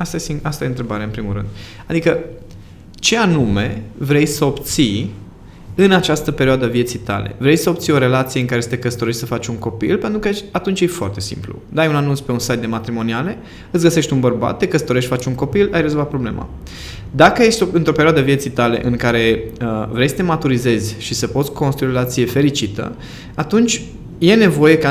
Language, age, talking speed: Romanian, 20-39, 200 wpm